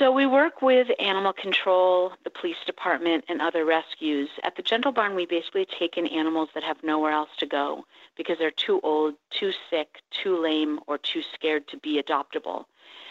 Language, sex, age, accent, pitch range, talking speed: English, female, 50-69, American, 155-195 Hz, 190 wpm